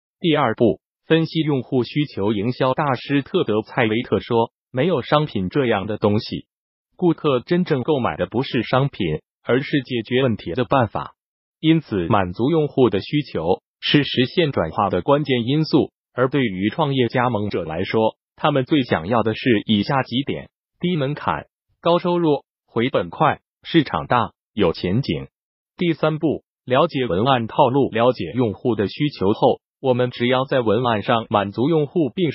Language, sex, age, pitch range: Chinese, male, 30-49, 115-155 Hz